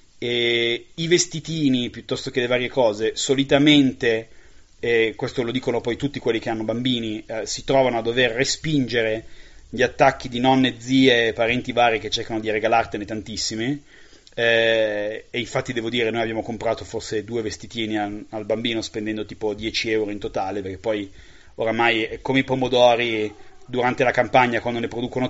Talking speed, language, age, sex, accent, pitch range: 165 wpm, Italian, 30-49, male, native, 110-130 Hz